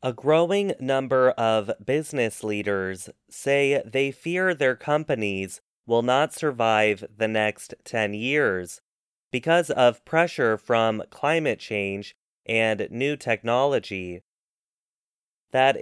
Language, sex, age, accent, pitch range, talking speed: English, male, 20-39, American, 110-145 Hz, 105 wpm